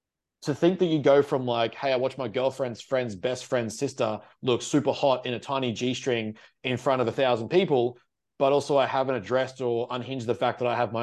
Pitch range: 120-140 Hz